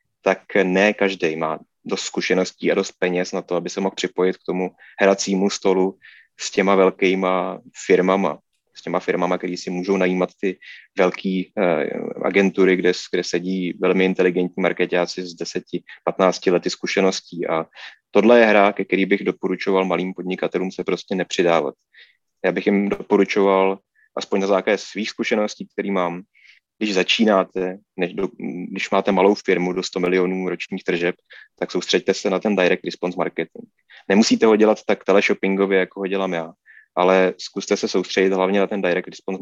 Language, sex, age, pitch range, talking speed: Czech, male, 20-39, 90-100 Hz, 165 wpm